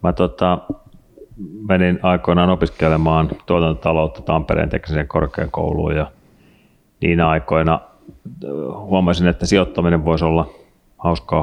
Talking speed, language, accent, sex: 95 wpm, Finnish, native, male